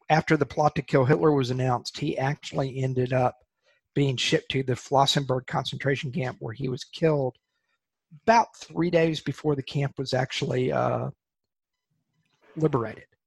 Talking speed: 150 wpm